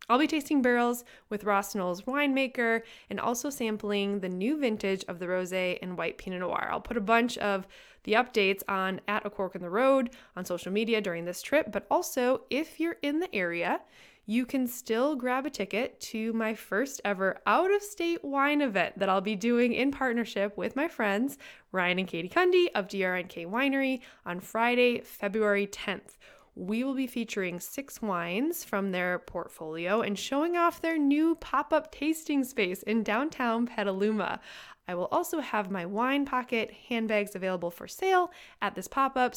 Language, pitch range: English, 200-275 Hz